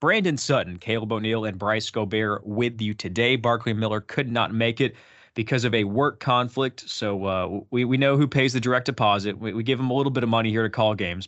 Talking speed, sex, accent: 235 wpm, male, American